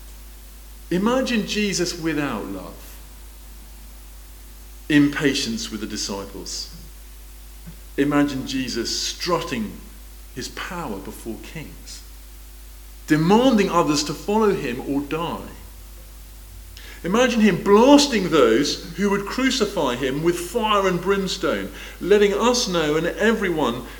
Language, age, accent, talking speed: English, 40-59, British, 100 wpm